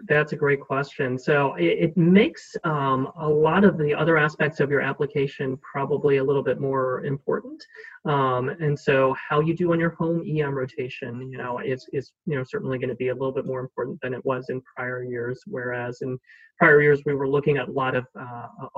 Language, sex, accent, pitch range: English, male, American, 130-150 Hz